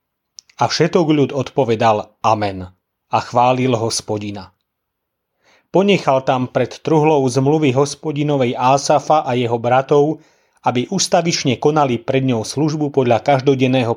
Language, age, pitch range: Slovak, 30-49, 125-155 Hz